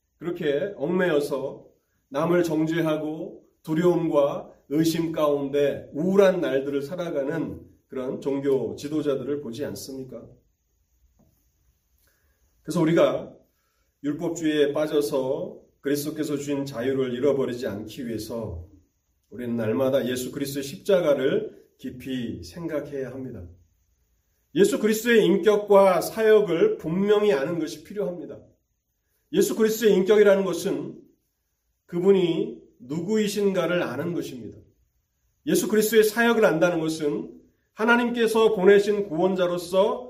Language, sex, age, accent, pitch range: Korean, male, 30-49, native, 125-195 Hz